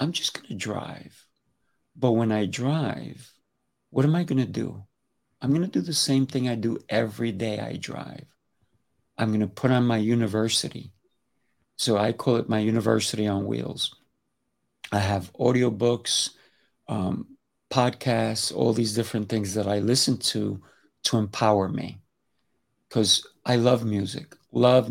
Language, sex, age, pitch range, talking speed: English, male, 50-69, 105-120 Hz, 155 wpm